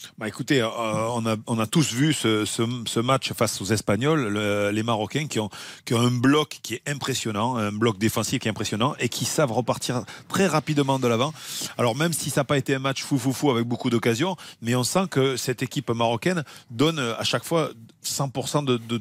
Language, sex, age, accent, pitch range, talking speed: French, male, 40-59, French, 115-145 Hz, 235 wpm